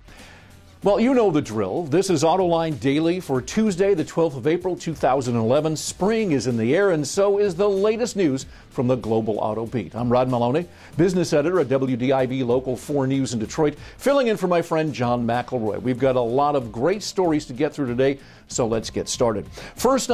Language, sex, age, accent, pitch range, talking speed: English, male, 50-69, American, 125-180 Hz, 200 wpm